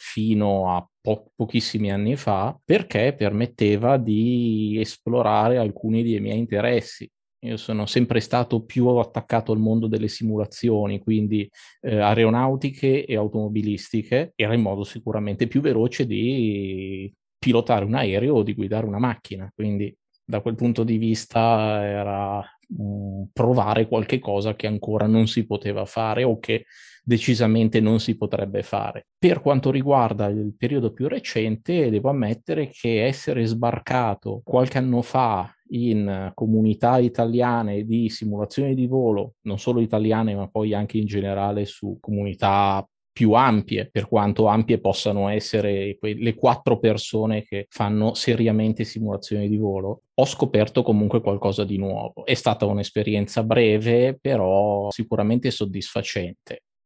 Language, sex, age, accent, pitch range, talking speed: Italian, male, 20-39, native, 105-120 Hz, 135 wpm